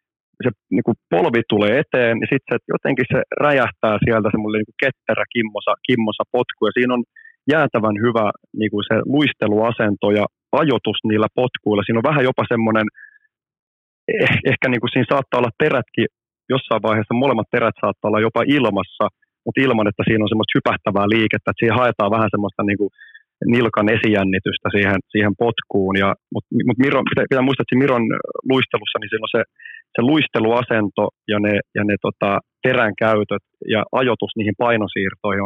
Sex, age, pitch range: male, 30-49, 105-125 Hz